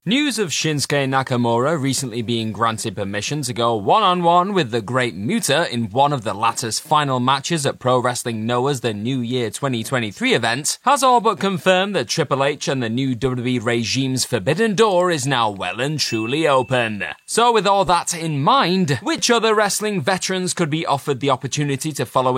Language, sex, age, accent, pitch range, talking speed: English, male, 20-39, British, 125-185 Hz, 180 wpm